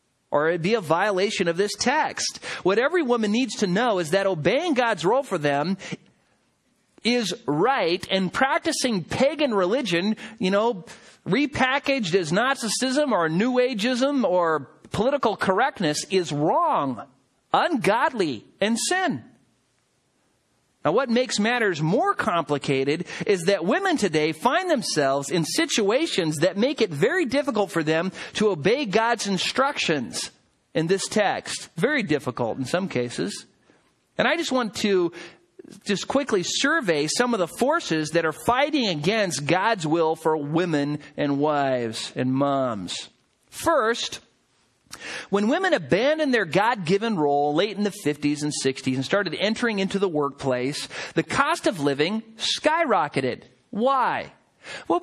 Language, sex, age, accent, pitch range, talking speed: English, male, 40-59, American, 165-245 Hz, 135 wpm